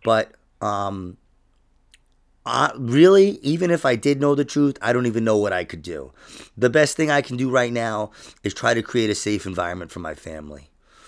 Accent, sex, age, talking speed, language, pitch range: American, male, 30-49, 200 wpm, English, 105-145 Hz